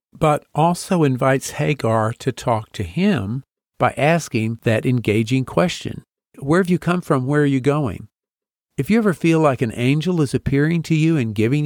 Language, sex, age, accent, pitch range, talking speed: English, male, 50-69, American, 115-160 Hz, 180 wpm